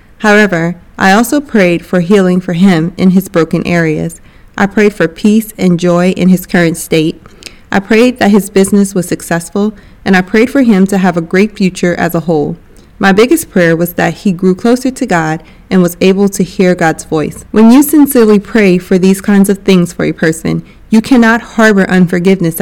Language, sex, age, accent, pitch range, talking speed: English, female, 30-49, American, 170-210 Hz, 200 wpm